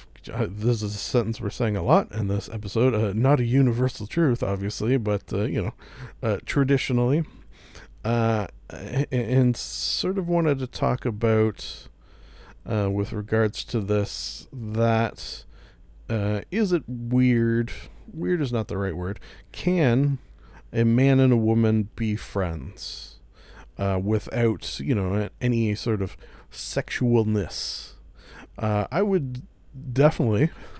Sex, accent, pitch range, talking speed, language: male, American, 100-125 Hz, 135 wpm, English